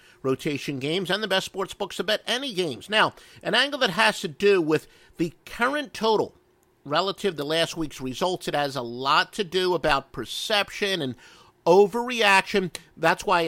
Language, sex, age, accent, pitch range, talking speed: English, male, 50-69, American, 130-190 Hz, 175 wpm